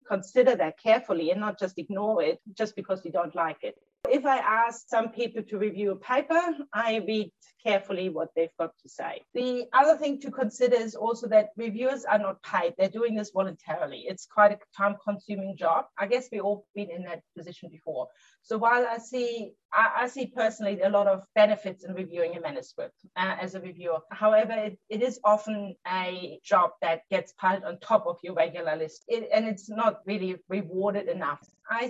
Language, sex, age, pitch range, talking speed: English, female, 30-49, 200-240 Hz, 195 wpm